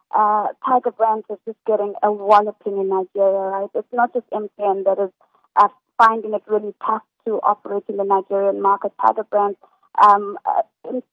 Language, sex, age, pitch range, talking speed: English, female, 20-39, 205-230 Hz, 180 wpm